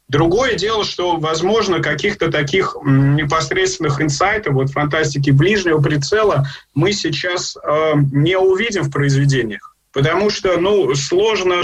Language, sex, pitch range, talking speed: Russian, male, 150-180 Hz, 120 wpm